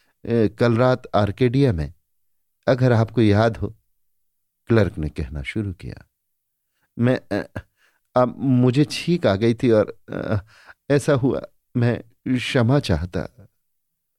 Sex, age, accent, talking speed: male, 50-69, native, 115 wpm